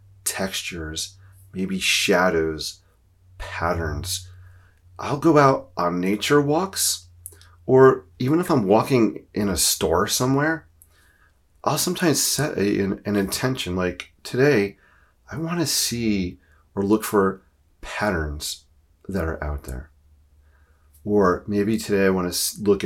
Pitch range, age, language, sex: 80-105 Hz, 30-49, English, male